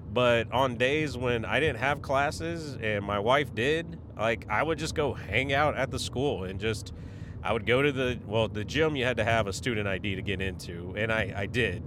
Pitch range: 105-130 Hz